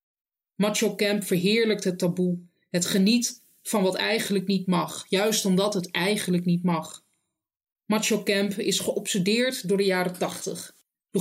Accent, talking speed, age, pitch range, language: Dutch, 145 wpm, 30-49, 180-210 Hz, Dutch